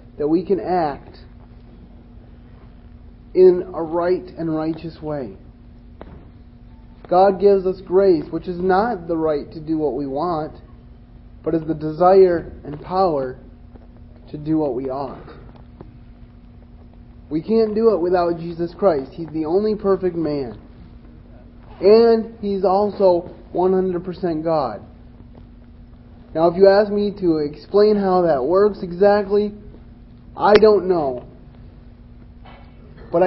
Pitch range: 155-195 Hz